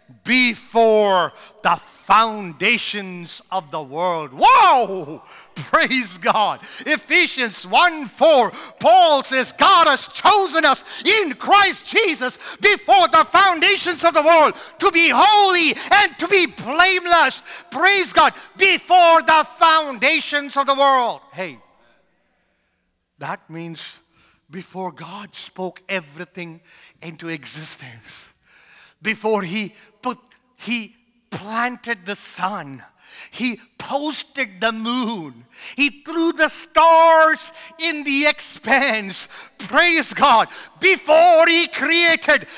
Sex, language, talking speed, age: male, English, 105 wpm, 50-69